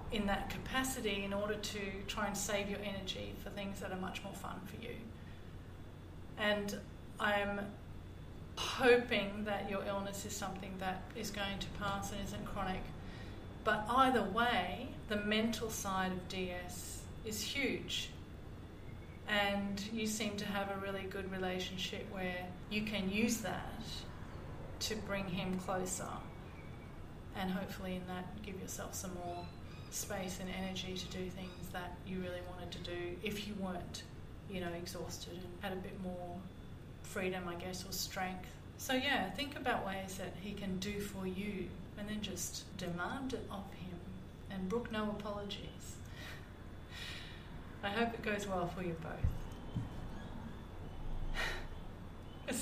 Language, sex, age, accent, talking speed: English, female, 40-59, Australian, 150 wpm